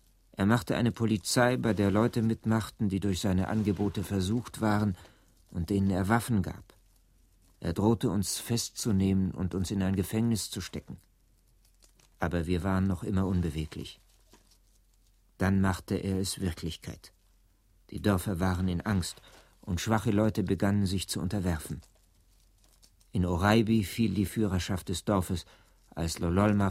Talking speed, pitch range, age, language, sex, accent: 140 wpm, 90-105 Hz, 60-79, German, male, German